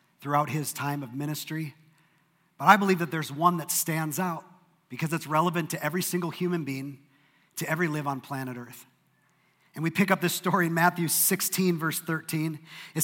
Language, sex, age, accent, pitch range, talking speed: English, male, 40-59, American, 155-195 Hz, 185 wpm